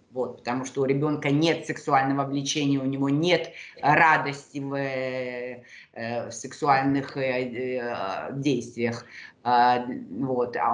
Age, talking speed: 30-49, 90 wpm